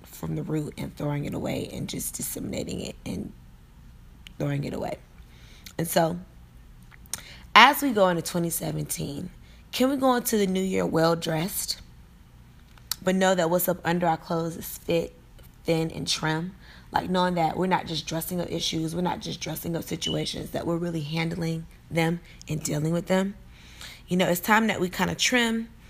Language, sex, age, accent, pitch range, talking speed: English, female, 20-39, American, 155-185 Hz, 175 wpm